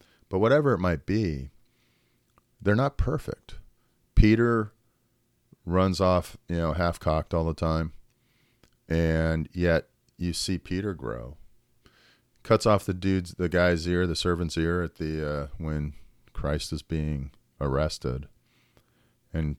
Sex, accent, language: male, American, English